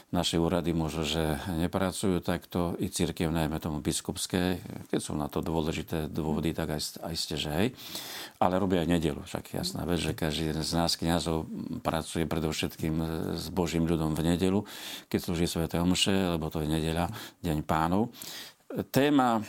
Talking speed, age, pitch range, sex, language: 165 wpm, 50-69, 80-90 Hz, male, Slovak